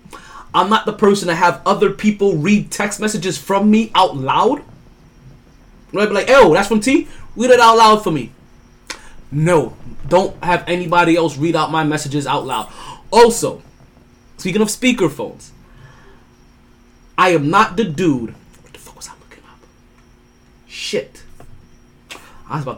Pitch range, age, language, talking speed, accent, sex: 155-215 Hz, 20-39, English, 160 wpm, American, male